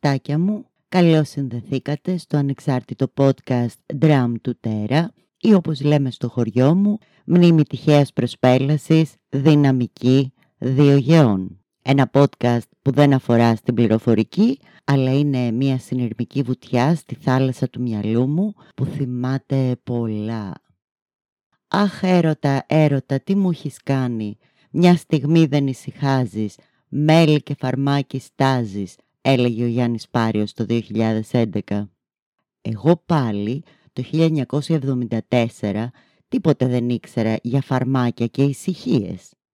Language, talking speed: Greek, 105 wpm